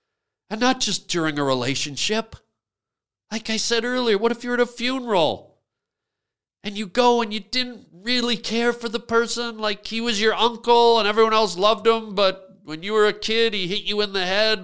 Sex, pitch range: male, 165-235 Hz